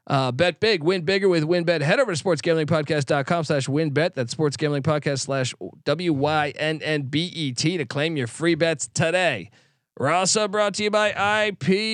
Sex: male